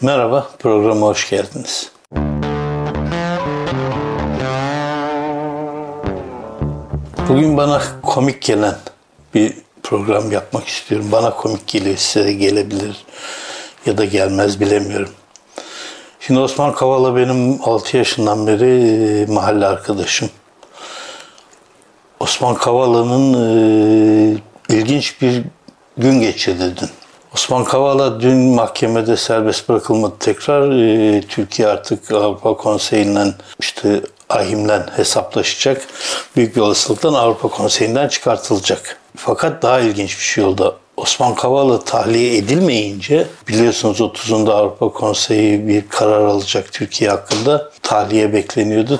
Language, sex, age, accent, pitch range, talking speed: Turkish, male, 60-79, native, 105-130 Hz, 95 wpm